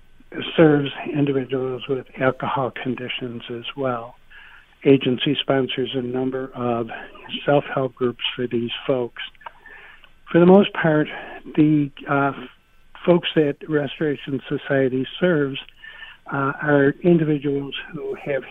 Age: 60-79